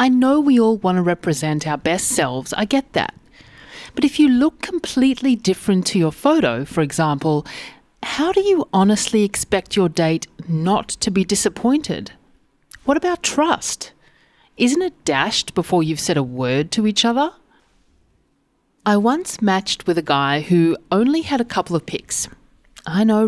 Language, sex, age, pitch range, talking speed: English, female, 40-59, 175-260 Hz, 165 wpm